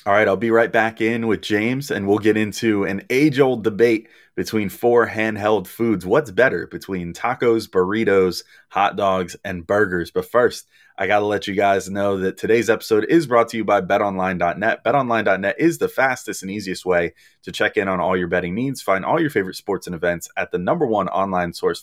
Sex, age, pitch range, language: male, 30-49, 95-115 Hz, English